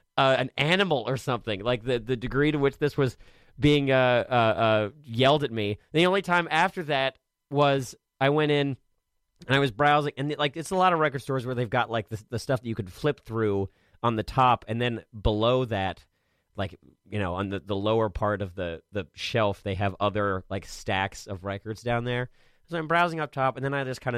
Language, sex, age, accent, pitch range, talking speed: English, male, 30-49, American, 100-140 Hz, 230 wpm